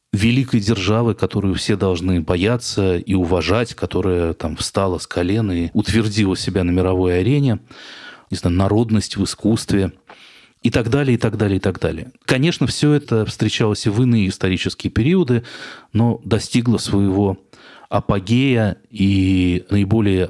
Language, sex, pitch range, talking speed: Russian, male, 95-115 Hz, 135 wpm